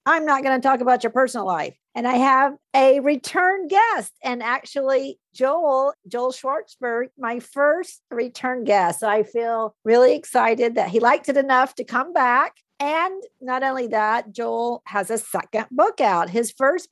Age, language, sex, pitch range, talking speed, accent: 50-69, English, female, 200-255 Hz, 175 wpm, American